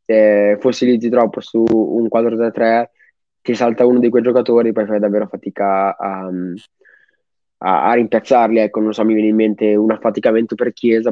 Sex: male